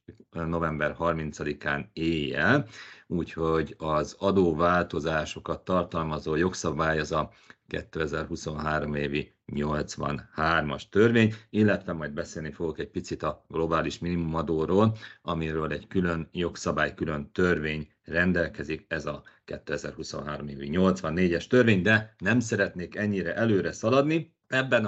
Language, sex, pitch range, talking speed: Hungarian, male, 80-105 Hz, 105 wpm